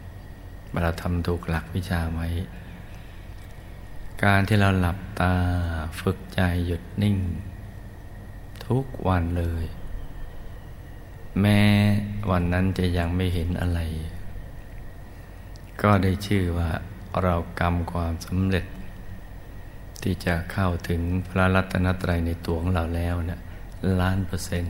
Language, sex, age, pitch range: Thai, male, 60-79, 90-100 Hz